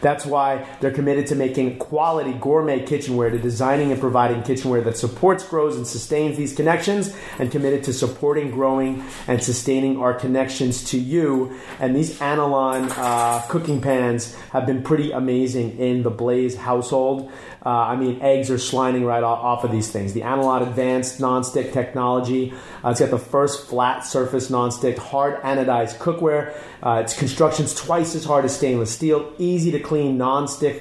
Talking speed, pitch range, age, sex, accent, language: 170 wpm, 120-140 Hz, 30-49, male, American, English